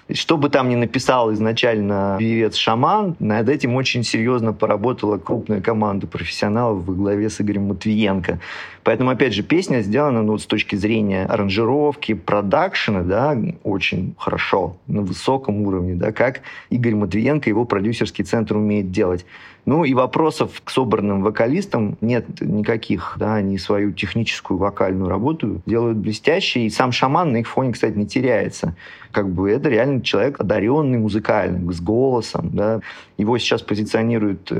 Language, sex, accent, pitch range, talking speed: Russian, male, native, 105-125 Hz, 145 wpm